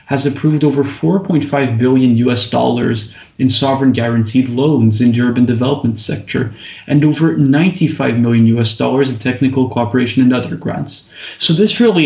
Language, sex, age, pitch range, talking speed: English, male, 30-49, 115-140 Hz, 155 wpm